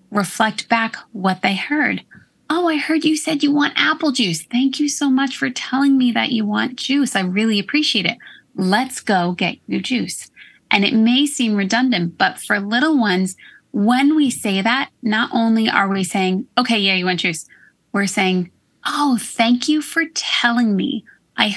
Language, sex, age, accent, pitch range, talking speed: English, female, 30-49, American, 195-260 Hz, 185 wpm